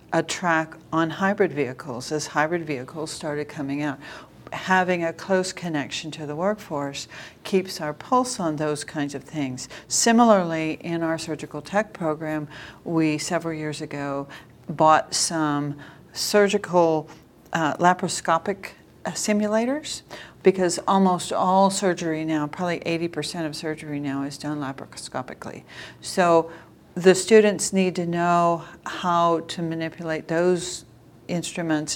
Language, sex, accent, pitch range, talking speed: English, female, American, 150-180 Hz, 125 wpm